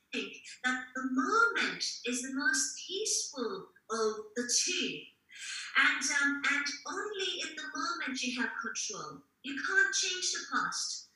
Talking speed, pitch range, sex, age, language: 140 wpm, 245-295 Hz, female, 30-49, English